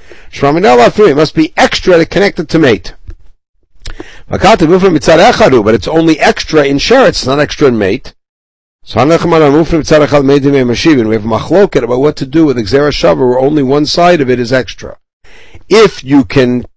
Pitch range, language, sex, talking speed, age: 120-155 Hz, English, male, 145 wpm, 60-79